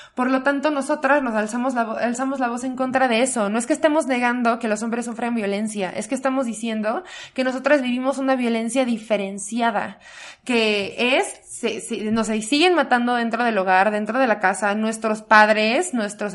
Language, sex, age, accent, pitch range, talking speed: Spanish, female, 20-39, Mexican, 220-275 Hz, 195 wpm